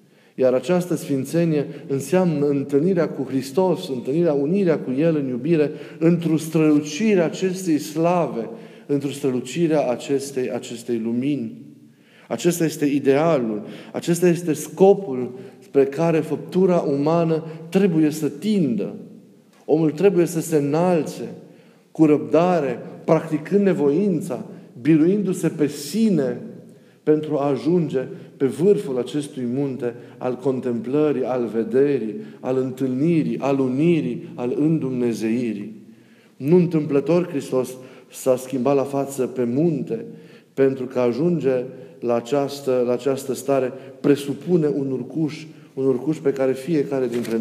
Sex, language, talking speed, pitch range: male, Romanian, 115 wpm, 130-160 Hz